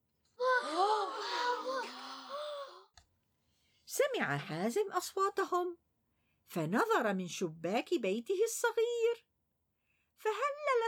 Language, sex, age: Arabic, female, 50-69